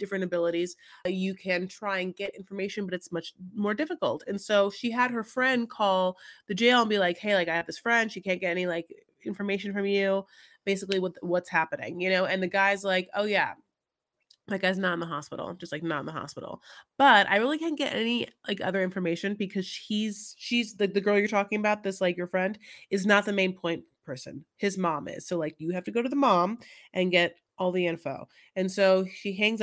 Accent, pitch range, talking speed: American, 185-225 Hz, 225 wpm